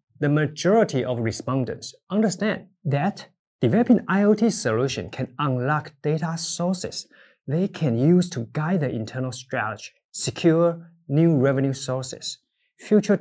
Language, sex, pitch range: Chinese, male, 125-180 Hz